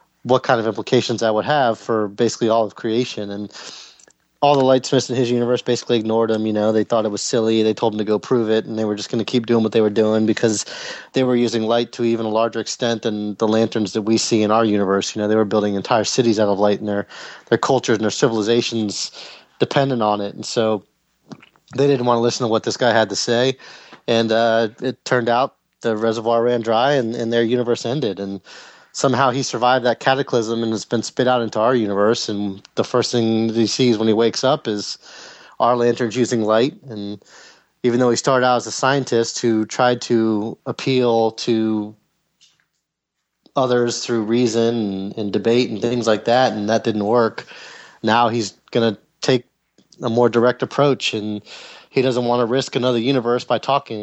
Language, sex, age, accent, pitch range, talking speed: English, male, 20-39, American, 110-120 Hz, 215 wpm